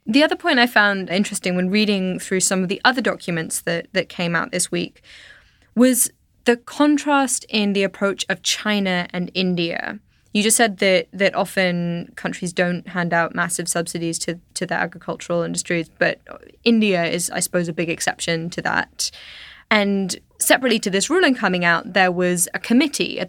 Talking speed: 180 wpm